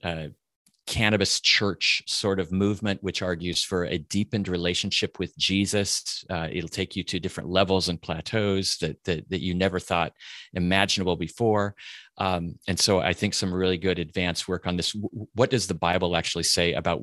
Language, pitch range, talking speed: English, 85-100 Hz, 175 wpm